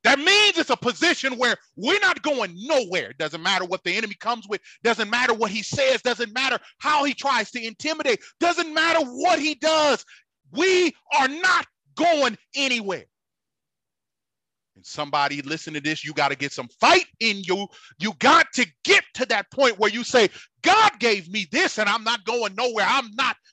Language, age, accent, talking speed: English, 30-49, American, 190 wpm